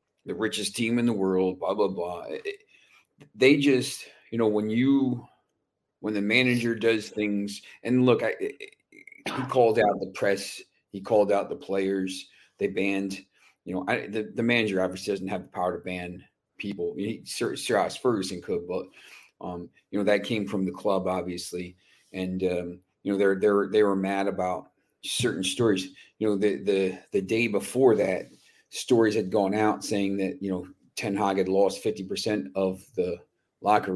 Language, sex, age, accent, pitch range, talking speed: English, male, 40-59, American, 95-105 Hz, 180 wpm